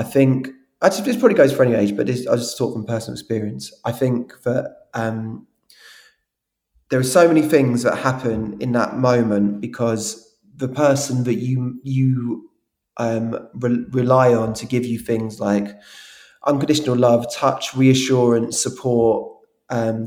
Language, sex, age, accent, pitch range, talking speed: English, male, 20-39, British, 115-130 Hz, 160 wpm